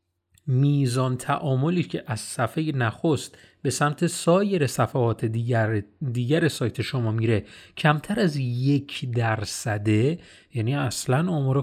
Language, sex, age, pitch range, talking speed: Persian, male, 30-49, 120-170 Hz, 115 wpm